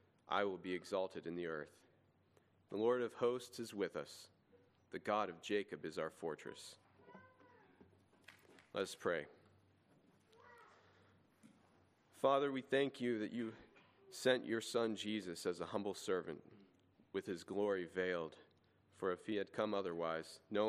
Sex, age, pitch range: male, 40-59, 95-115 Hz